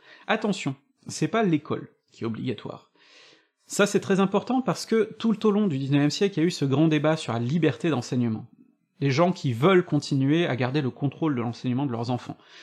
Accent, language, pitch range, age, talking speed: French, French, 125-175 Hz, 40-59, 215 wpm